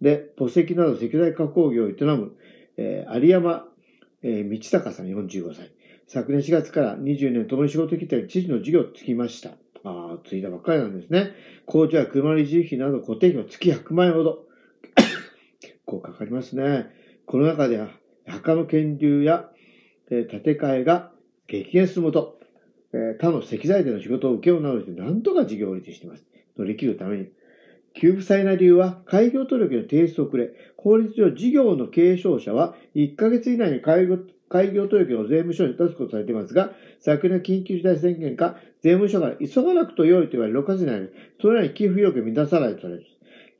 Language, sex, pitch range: Japanese, male, 135-185 Hz